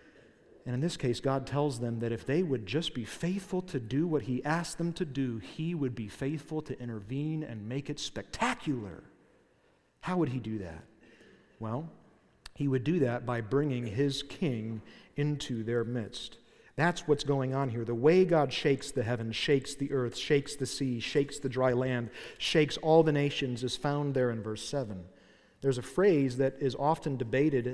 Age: 40-59